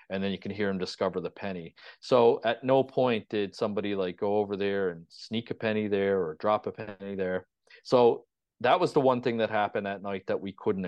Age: 30-49